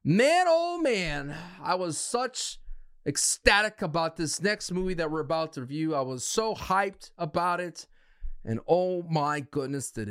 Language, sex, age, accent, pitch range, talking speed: English, male, 30-49, American, 120-160 Hz, 160 wpm